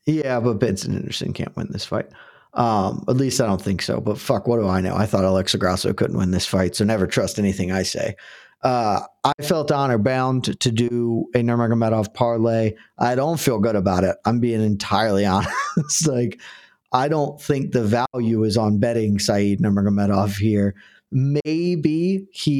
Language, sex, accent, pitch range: English, male, American, 105-130 Hz